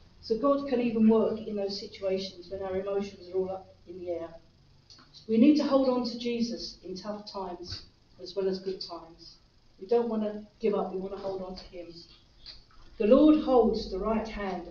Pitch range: 190-230 Hz